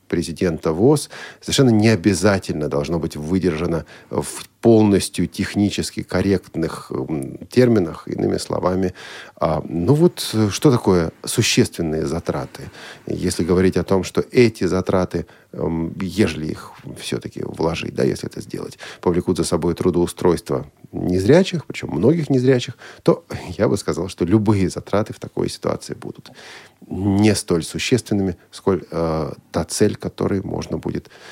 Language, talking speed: Russian, 125 wpm